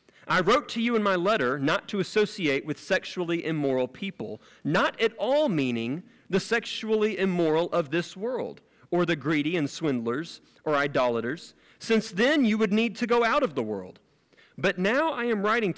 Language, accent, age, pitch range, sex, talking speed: English, American, 40-59, 125-185 Hz, male, 180 wpm